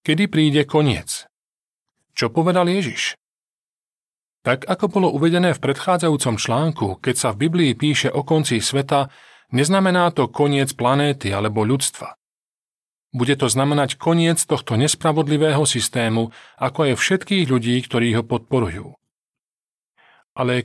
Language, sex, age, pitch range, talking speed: Slovak, male, 40-59, 115-155 Hz, 120 wpm